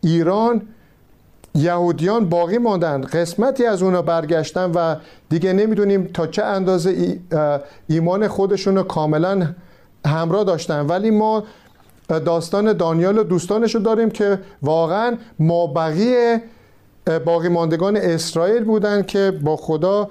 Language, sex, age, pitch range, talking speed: Persian, male, 50-69, 160-205 Hz, 110 wpm